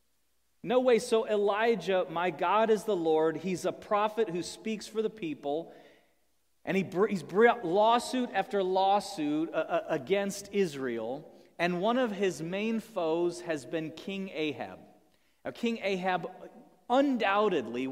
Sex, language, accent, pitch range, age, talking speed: male, English, American, 160-215 Hz, 40-59, 130 wpm